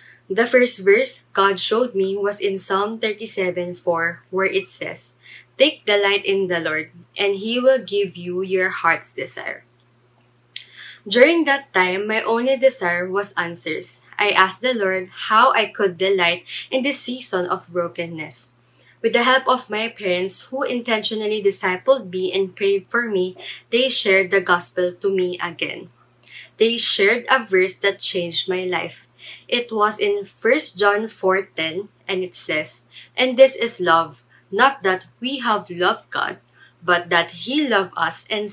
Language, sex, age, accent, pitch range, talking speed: English, female, 20-39, Filipino, 180-230 Hz, 160 wpm